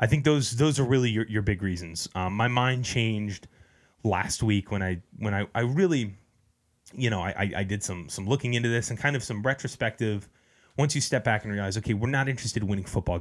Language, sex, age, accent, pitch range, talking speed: English, male, 20-39, American, 100-125 Hz, 225 wpm